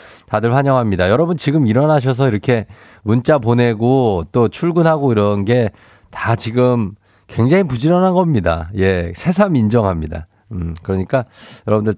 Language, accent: Korean, native